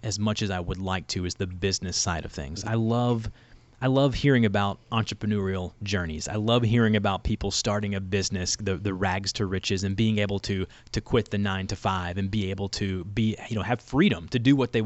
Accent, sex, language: American, male, English